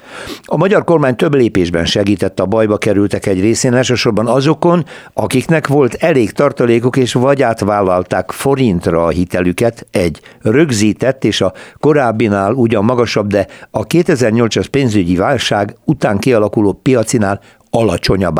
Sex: male